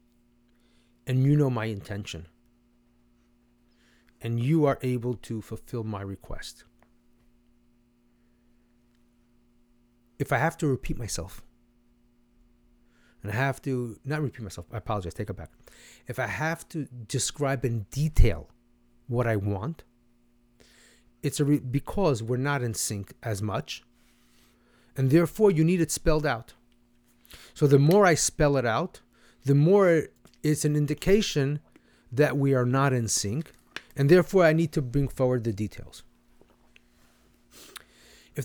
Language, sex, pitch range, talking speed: English, male, 110-150 Hz, 135 wpm